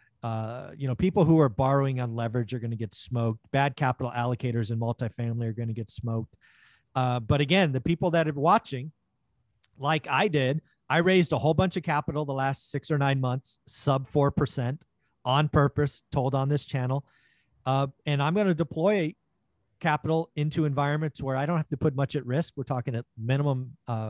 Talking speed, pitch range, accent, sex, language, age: 195 wpm, 125-165 Hz, American, male, English, 40-59